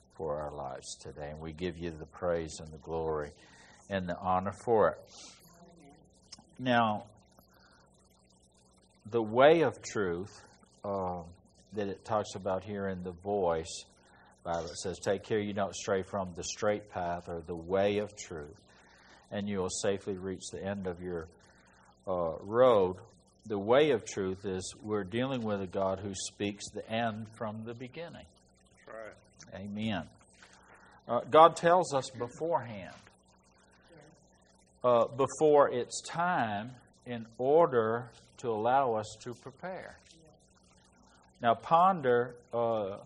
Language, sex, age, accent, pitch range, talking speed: English, male, 60-79, American, 90-120 Hz, 135 wpm